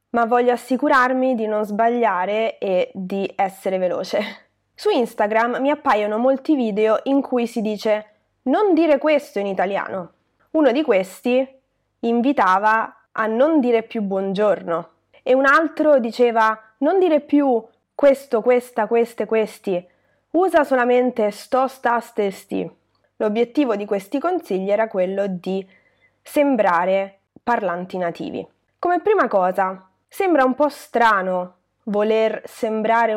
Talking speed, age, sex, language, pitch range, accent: 125 wpm, 20-39, female, Italian, 195-265 Hz, native